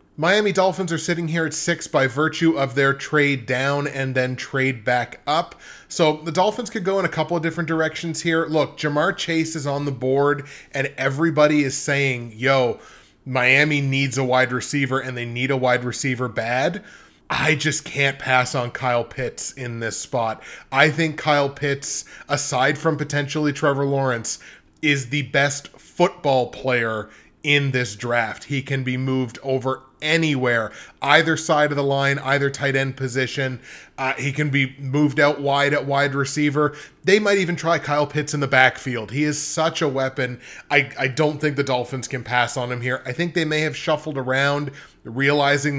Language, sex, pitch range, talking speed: English, male, 130-155 Hz, 180 wpm